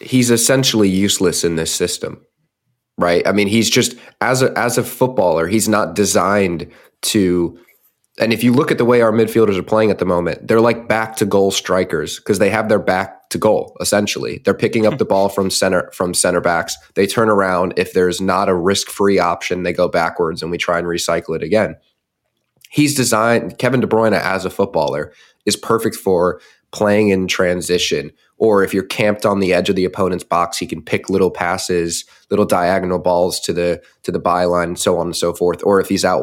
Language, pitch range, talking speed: English, 90-115 Hz, 200 wpm